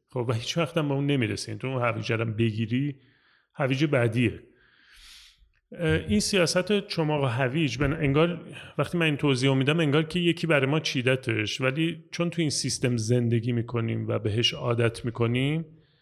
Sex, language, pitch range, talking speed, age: male, Persian, 110-140 Hz, 160 wpm, 30-49